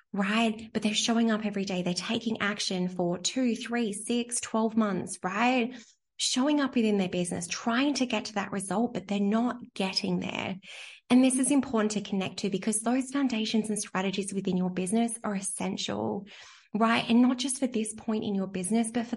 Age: 20-39